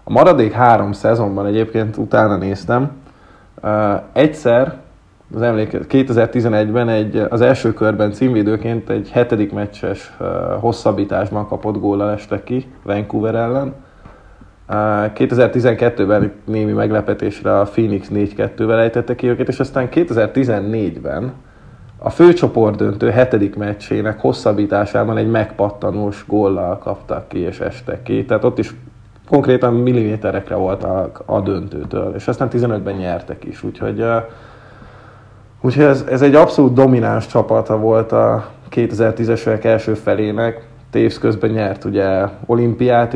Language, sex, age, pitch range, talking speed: Hungarian, male, 30-49, 105-120 Hz, 120 wpm